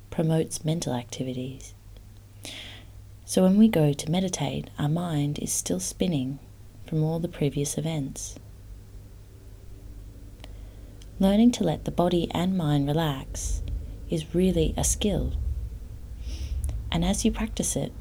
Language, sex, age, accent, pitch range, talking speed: English, female, 30-49, Australian, 100-155 Hz, 120 wpm